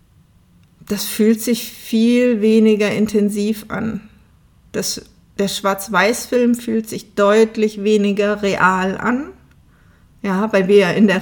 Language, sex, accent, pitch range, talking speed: German, female, German, 195-230 Hz, 120 wpm